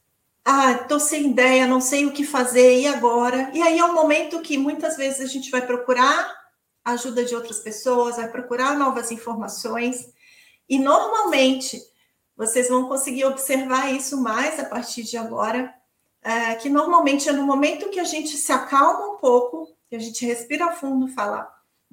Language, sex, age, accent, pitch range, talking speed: Portuguese, female, 40-59, Brazilian, 245-295 Hz, 175 wpm